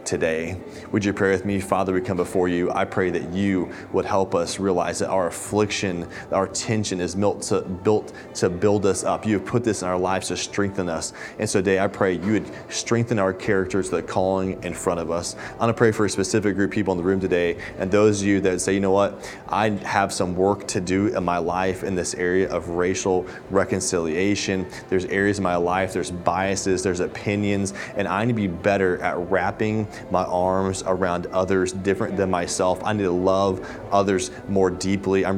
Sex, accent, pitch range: male, American, 90-100 Hz